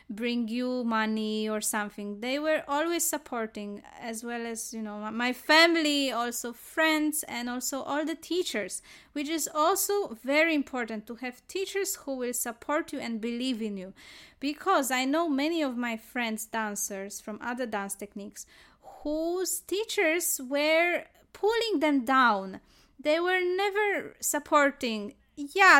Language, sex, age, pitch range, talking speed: English, female, 20-39, 225-310 Hz, 145 wpm